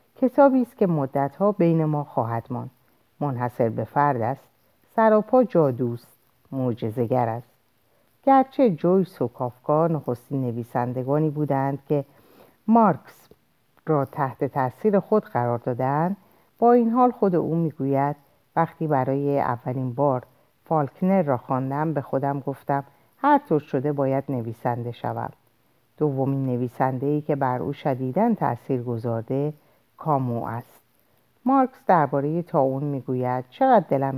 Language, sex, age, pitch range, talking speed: Persian, female, 50-69, 125-160 Hz, 120 wpm